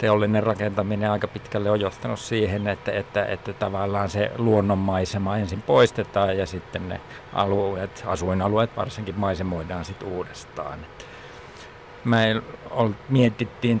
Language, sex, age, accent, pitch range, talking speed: Finnish, male, 50-69, native, 95-115 Hz, 105 wpm